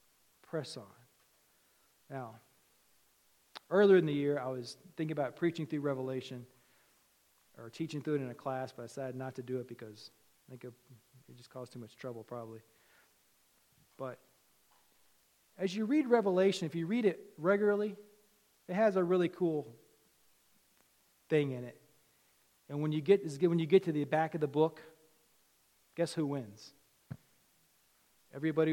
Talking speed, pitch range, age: 150 wpm, 130-180 Hz, 40-59